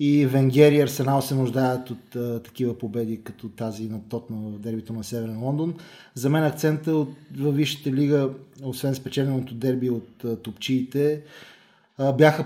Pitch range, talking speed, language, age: 120-140 Hz, 150 wpm, Bulgarian, 20-39